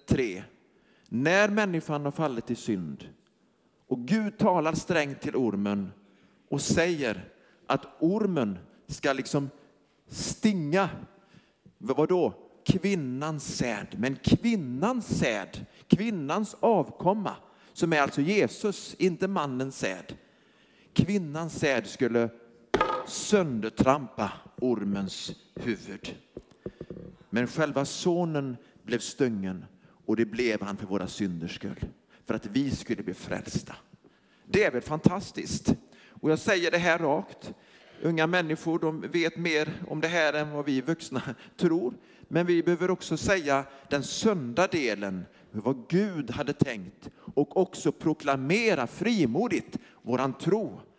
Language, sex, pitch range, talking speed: Swedish, male, 130-185 Hz, 120 wpm